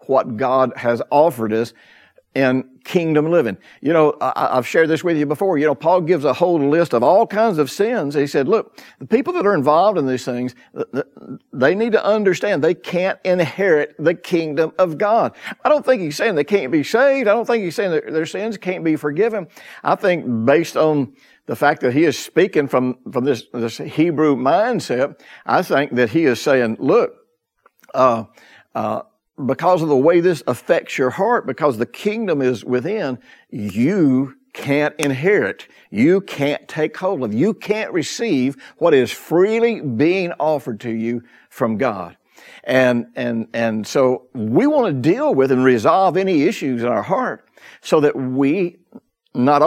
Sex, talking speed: male, 180 wpm